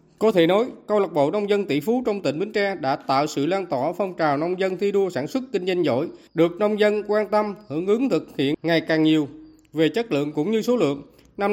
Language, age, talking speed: Vietnamese, 20-39, 260 wpm